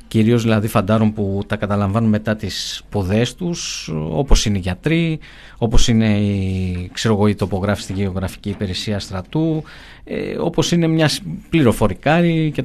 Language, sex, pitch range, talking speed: Greek, male, 105-135 Hz, 125 wpm